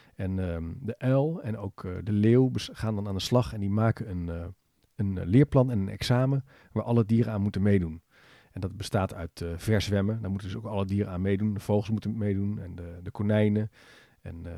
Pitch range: 100-115 Hz